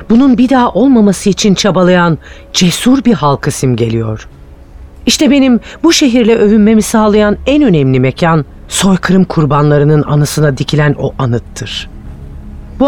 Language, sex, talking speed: Turkish, female, 120 wpm